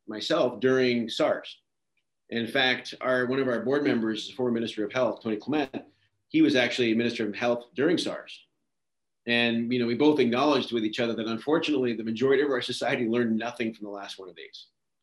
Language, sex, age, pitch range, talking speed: English, male, 40-59, 110-130 Hz, 205 wpm